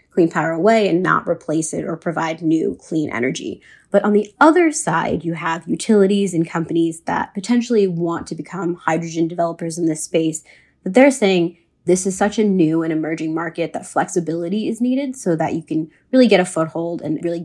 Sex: female